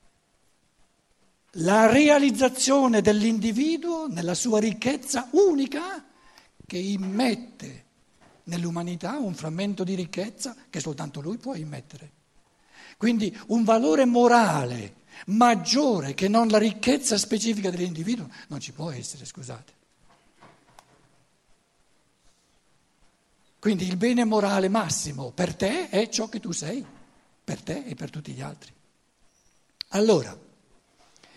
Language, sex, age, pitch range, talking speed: Italian, male, 60-79, 185-240 Hz, 105 wpm